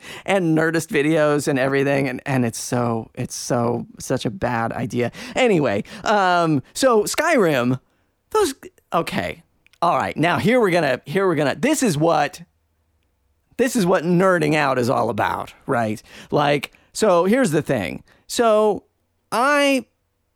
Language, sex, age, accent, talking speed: English, male, 40-59, American, 145 wpm